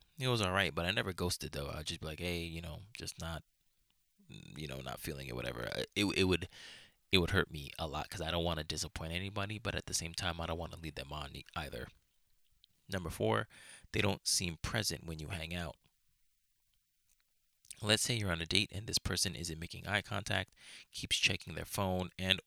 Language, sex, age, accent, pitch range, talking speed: English, male, 20-39, American, 80-100 Hz, 215 wpm